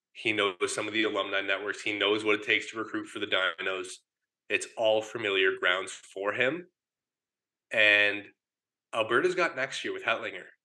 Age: 20-39